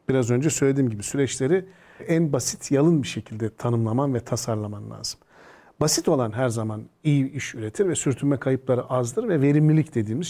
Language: Turkish